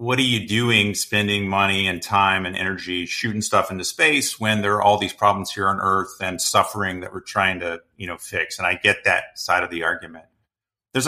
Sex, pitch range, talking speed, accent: male, 90-110 Hz, 220 wpm, American